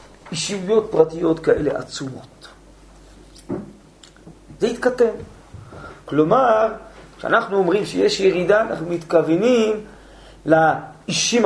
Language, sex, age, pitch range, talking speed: Hebrew, male, 40-59, 145-230 Hz, 75 wpm